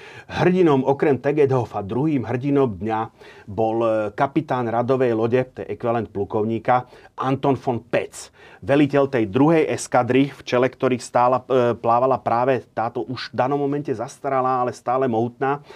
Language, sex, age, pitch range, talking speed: Slovak, male, 30-49, 110-130 Hz, 135 wpm